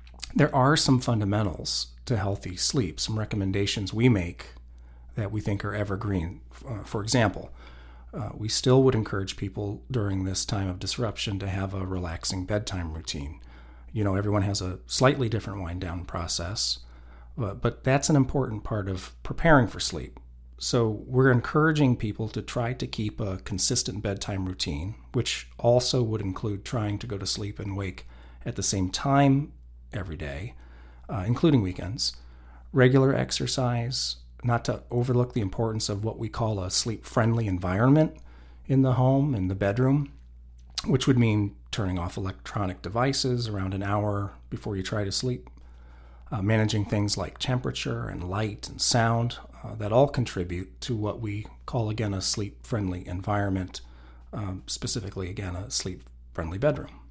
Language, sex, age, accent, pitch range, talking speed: English, male, 40-59, American, 90-120 Hz, 155 wpm